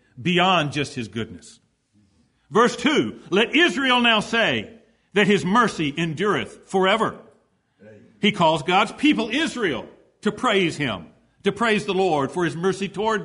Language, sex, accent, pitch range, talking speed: English, male, American, 170-235 Hz, 140 wpm